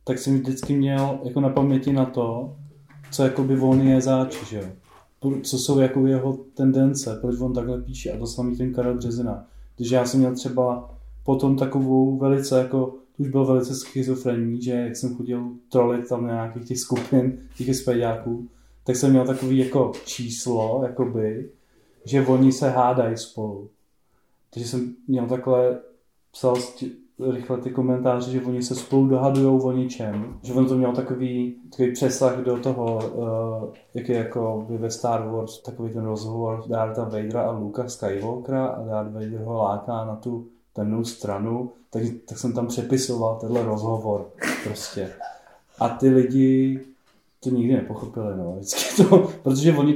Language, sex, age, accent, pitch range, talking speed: Czech, male, 20-39, native, 120-130 Hz, 160 wpm